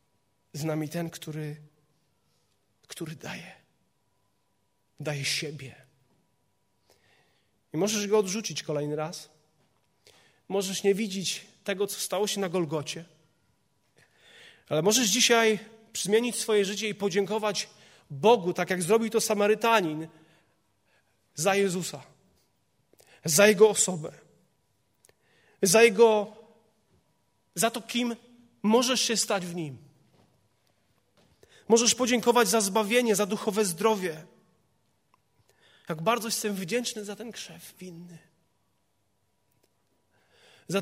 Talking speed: 100 wpm